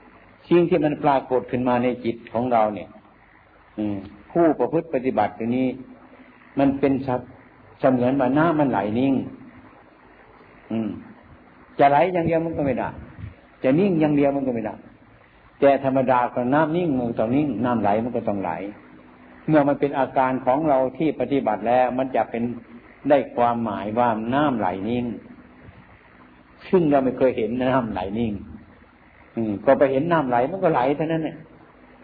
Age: 60-79